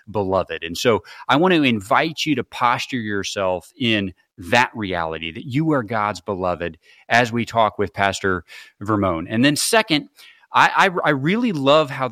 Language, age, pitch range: English, 30-49, 105-135 Hz